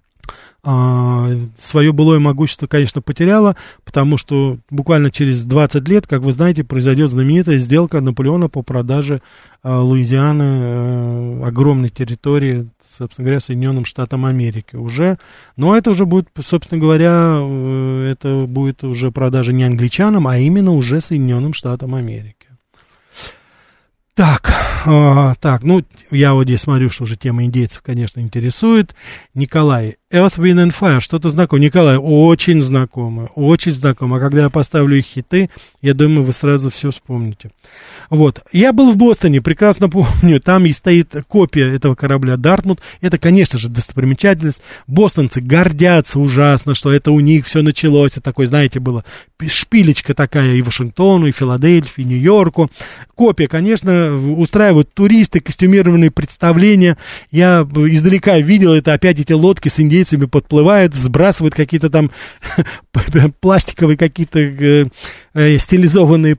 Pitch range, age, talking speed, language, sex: 130-170 Hz, 20-39, 130 wpm, Russian, male